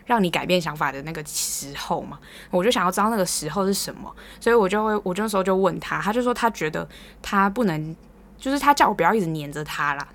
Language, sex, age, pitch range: Chinese, female, 20-39, 160-215 Hz